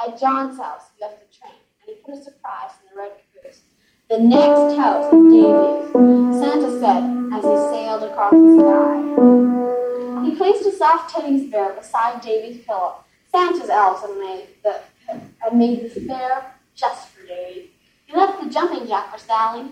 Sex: female